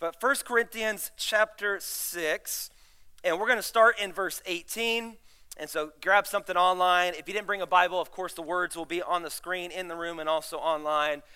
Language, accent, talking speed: English, American, 200 wpm